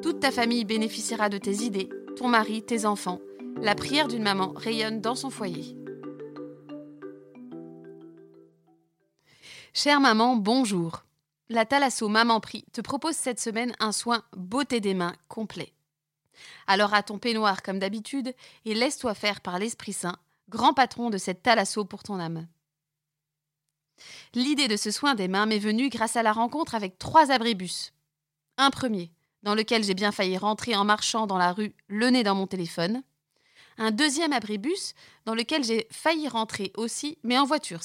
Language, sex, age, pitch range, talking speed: French, female, 30-49, 175-240 Hz, 160 wpm